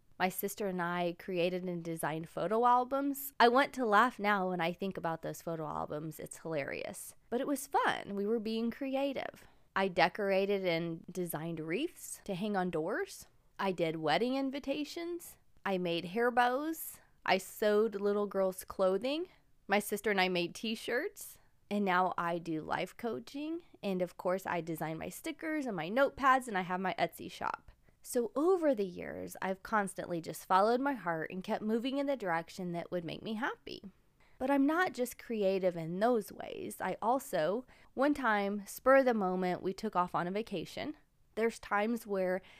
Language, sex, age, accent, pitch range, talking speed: English, female, 20-39, American, 180-235 Hz, 180 wpm